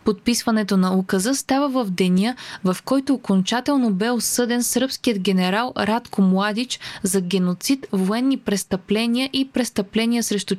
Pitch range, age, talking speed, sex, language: 195-240 Hz, 20-39, 125 wpm, female, Bulgarian